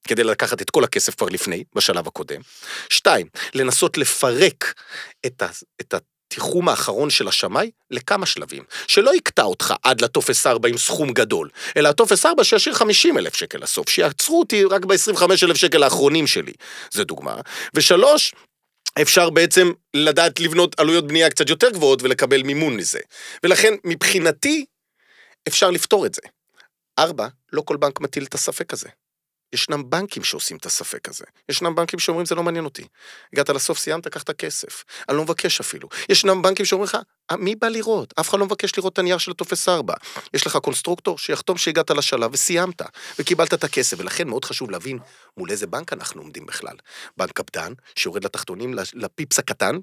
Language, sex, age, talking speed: Hebrew, male, 40-59, 170 wpm